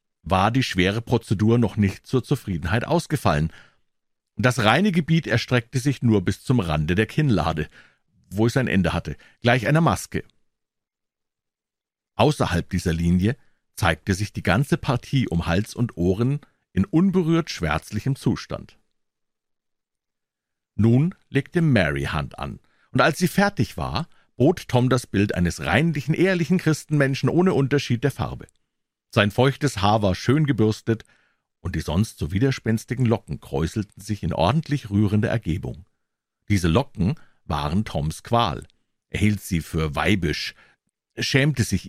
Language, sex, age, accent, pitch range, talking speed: German, male, 50-69, German, 90-135 Hz, 140 wpm